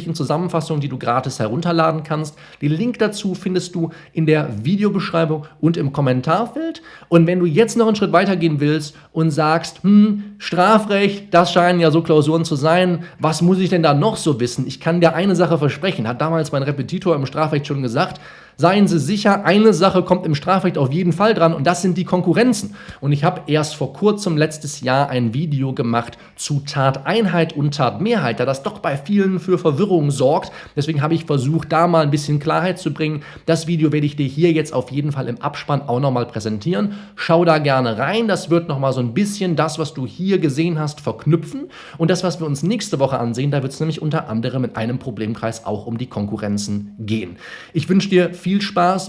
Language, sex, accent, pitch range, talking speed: German, male, German, 140-180 Hz, 210 wpm